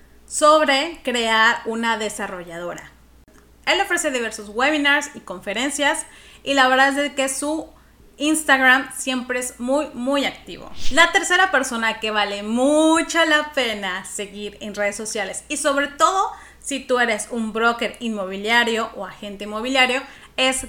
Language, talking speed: Spanish, 135 wpm